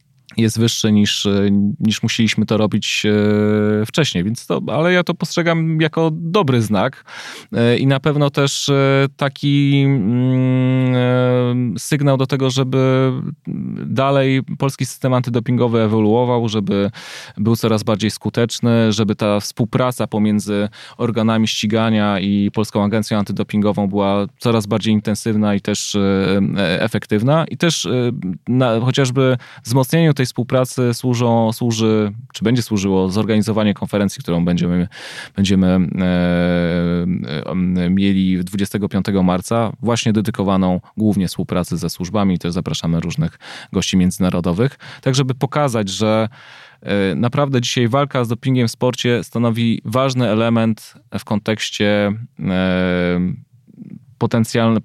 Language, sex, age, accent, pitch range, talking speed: Polish, male, 20-39, native, 100-125 Hz, 115 wpm